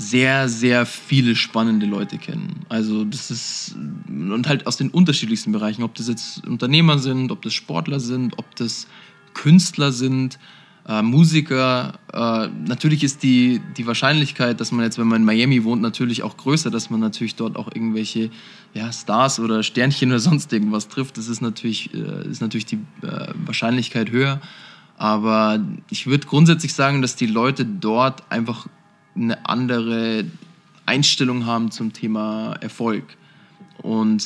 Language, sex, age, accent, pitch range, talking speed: German, male, 20-39, German, 115-140 Hz, 150 wpm